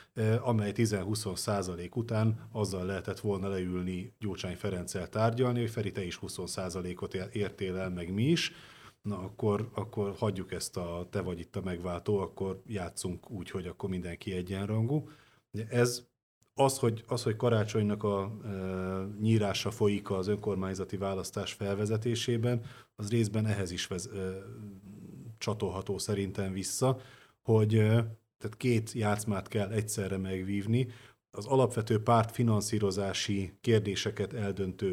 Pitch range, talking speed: 95-110 Hz, 130 wpm